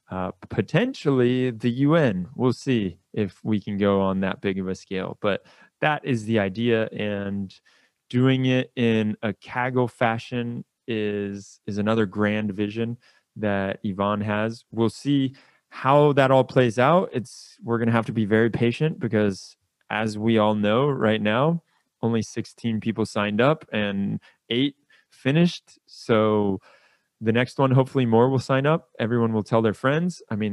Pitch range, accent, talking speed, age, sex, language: 105-125 Hz, American, 160 wpm, 20-39, male, English